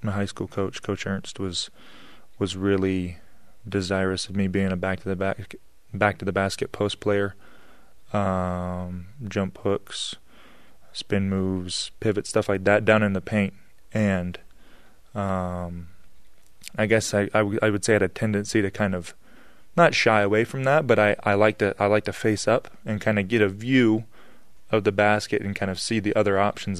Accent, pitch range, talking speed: American, 95-105 Hz, 190 wpm